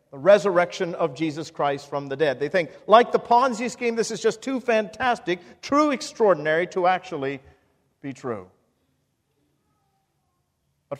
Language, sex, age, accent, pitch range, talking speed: English, male, 50-69, American, 165-235 Hz, 140 wpm